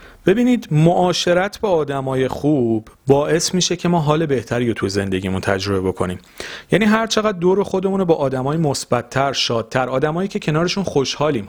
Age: 40-59